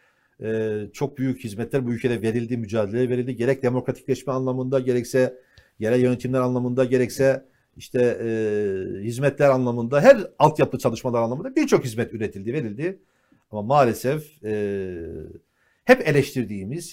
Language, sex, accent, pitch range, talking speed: Turkish, male, native, 115-150 Hz, 120 wpm